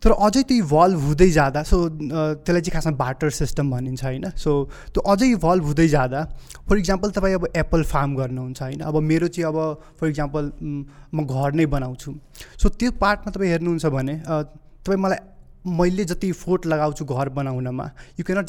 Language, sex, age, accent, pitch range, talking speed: English, male, 20-39, Indian, 140-175 Hz, 80 wpm